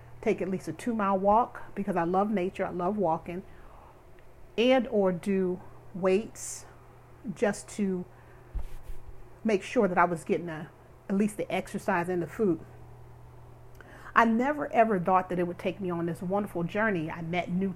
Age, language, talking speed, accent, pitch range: 40-59, English, 160 wpm, American, 175-210 Hz